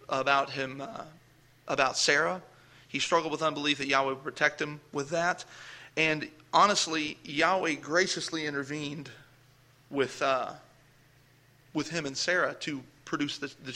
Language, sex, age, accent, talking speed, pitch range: English, male, 30-49, American, 135 wpm, 135-160 Hz